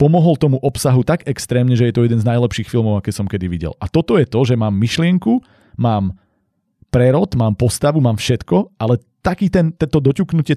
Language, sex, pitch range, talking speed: Slovak, male, 115-140 Hz, 195 wpm